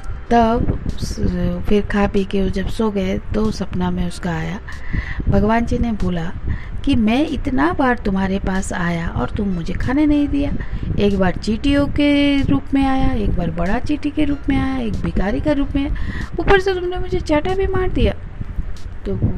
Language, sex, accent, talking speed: Hindi, female, native, 185 wpm